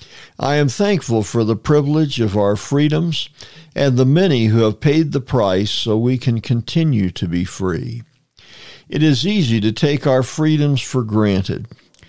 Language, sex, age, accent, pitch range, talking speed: English, male, 60-79, American, 110-150 Hz, 165 wpm